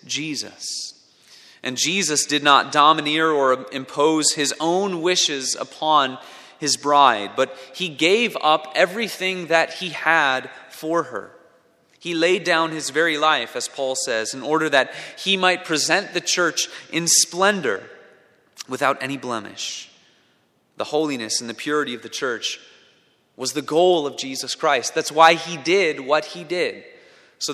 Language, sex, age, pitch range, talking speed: English, male, 30-49, 130-165 Hz, 150 wpm